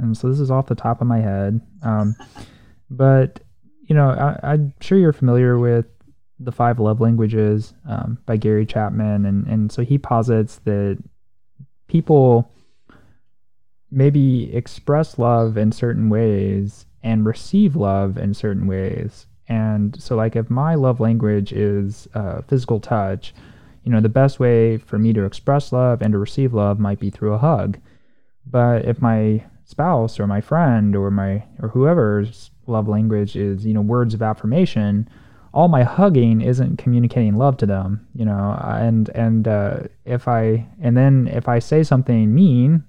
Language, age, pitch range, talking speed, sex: English, 20-39, 105-130 Hz, 165 wpm, male